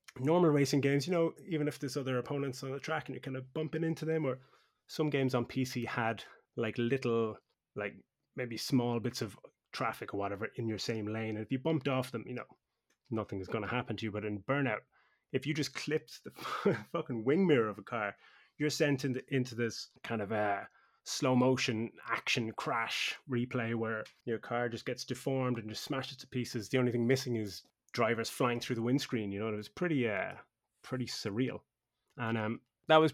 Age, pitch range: 20-39, 115-135 Hz